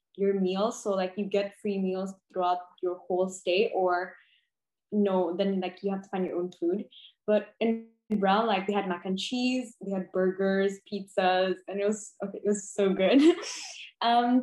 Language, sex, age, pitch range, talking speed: English, female, 20-39, 195-225 Hz, 195 wpm